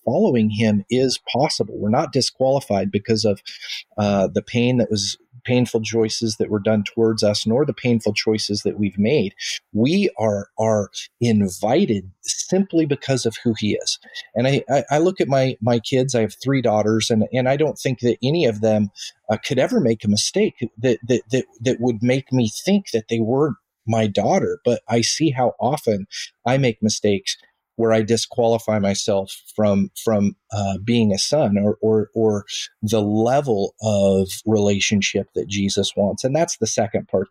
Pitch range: 105-125 Hz